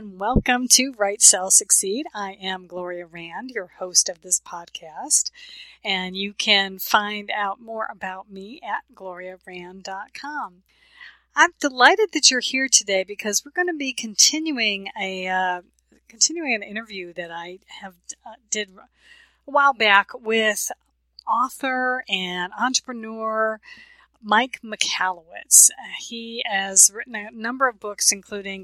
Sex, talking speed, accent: female, 135 wpm, American